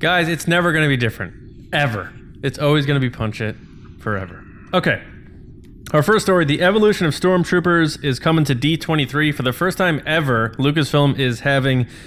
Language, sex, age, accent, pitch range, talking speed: English, male, 20-39, American, 115-150 Hz, 180 wpm